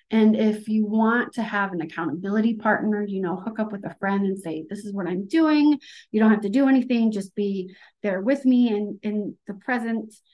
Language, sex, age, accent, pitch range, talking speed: English, female, 30-49, American, 190-220 Hz, 220 wpm